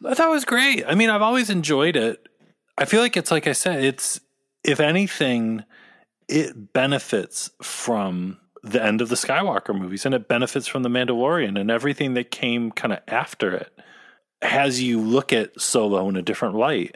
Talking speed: 190 wpm